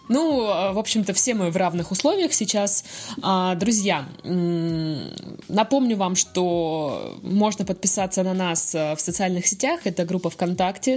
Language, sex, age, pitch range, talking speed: Russian, female, 20-39, 165-205 Hz, 125 wpm